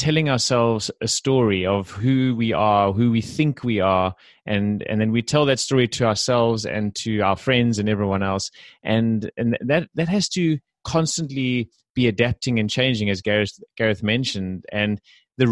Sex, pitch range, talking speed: male, 105-130 Hz, 180 wpm